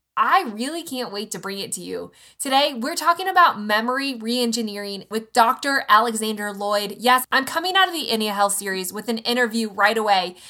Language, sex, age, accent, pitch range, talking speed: English, female, 20-39, American, 210-285 Hz, 190 wpm